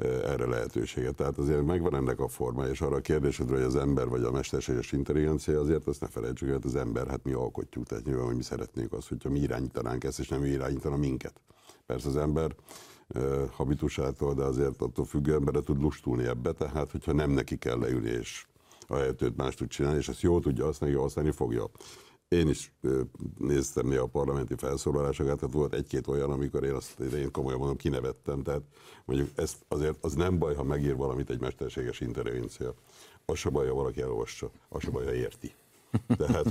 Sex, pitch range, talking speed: male, 65-75 Hz, 195 wpm